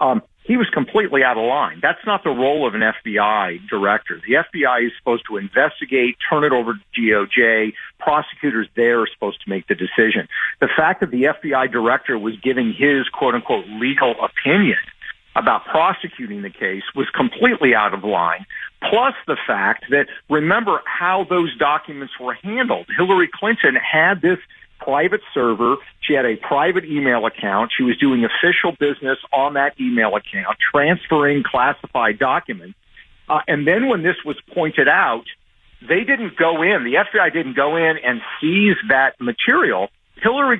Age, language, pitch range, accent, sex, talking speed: 50-69, English, 125-205 Hz, American, male, 165 wpm